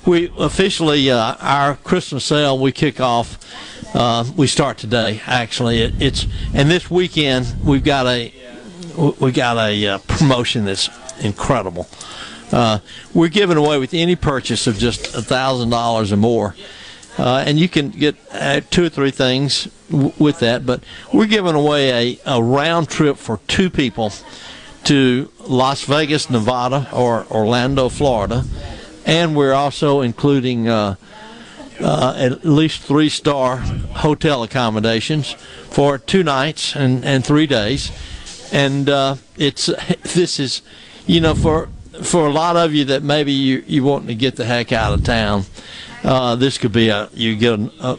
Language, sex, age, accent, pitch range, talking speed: English, male, 60-79, American, 120-150 Hz, 155 wpm